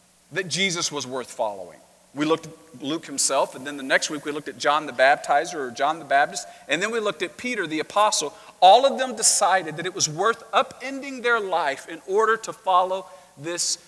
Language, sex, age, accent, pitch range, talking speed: English, male, 40-59, American, 160-230 Hz, 210 wpm